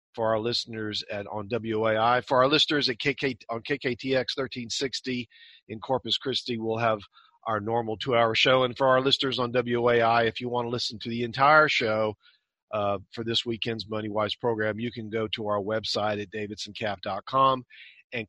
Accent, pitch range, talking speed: American, 120-150 Hz, 175 wpm